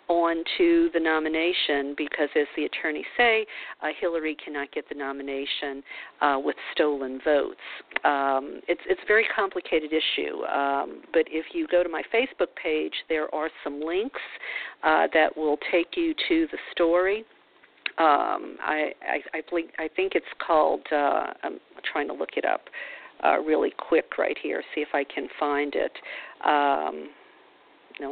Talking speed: 165 wpm